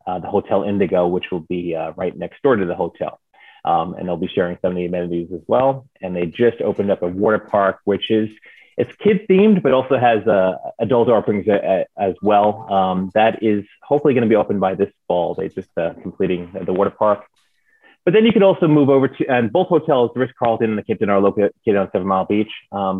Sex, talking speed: male, 245 wpm